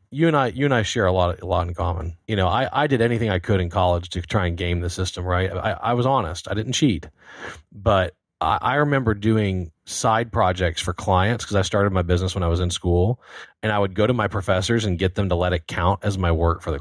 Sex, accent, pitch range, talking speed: male, American, 90-110 Hz, 270 wpm